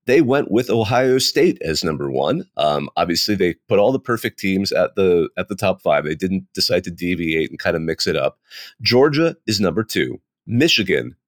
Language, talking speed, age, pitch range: English, 195 wpm, 30-49, 95-130 Hz